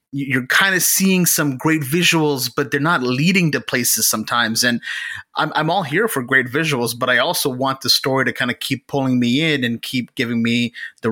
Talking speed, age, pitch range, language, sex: 215 wpm, 30-49, 120-145 Hz, English, male